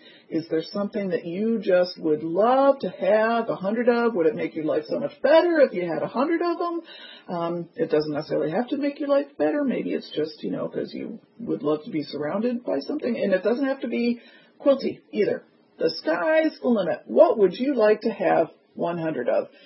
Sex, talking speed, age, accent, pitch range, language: female, 225 wpm, 40-59, American, 175-270 Hz, English